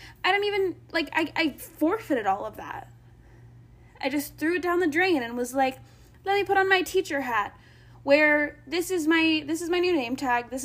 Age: 10-29